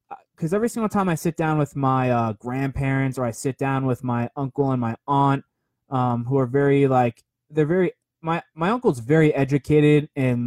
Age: 20-39